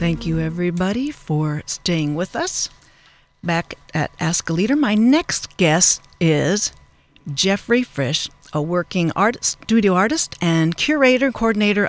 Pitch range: 165-210 Hz